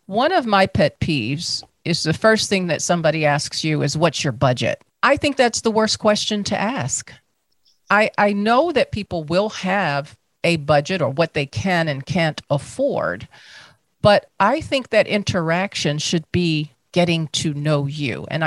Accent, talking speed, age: American, 170 wpm, 40-59